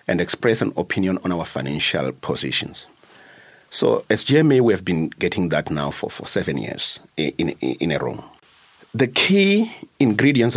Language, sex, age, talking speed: English, male, 50-69, 165 wpm